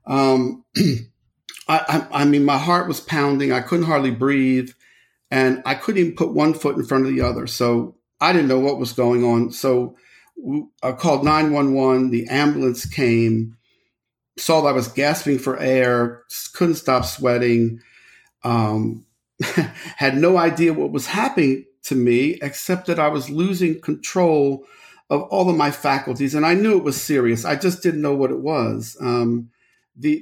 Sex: male